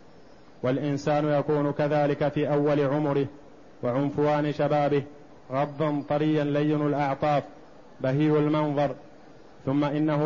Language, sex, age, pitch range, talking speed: Arabic, male, 30-49, 140-150 Hz, 95 wpm